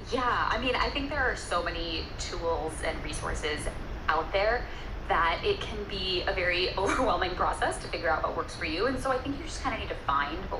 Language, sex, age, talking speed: English, female, 20-39, 230 wpm